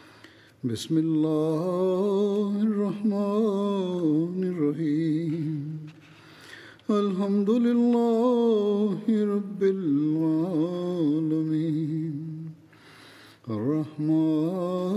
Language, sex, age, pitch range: Bulgarian, male, 60-79, 150-195 Hz